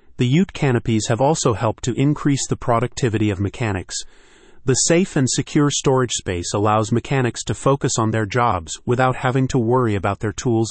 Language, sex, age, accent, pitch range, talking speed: English, male, 30-49, American, 110-135 Hz, 180 wpm